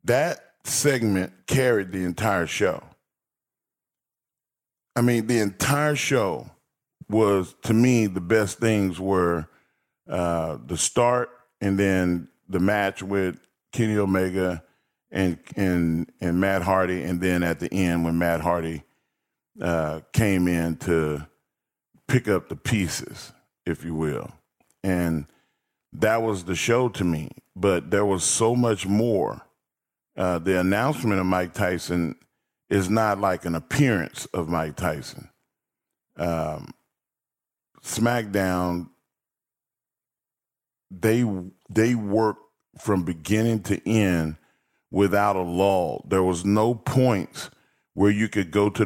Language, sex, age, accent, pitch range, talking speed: English, male, 40-59, American, 90-110 Hz, 125 wpm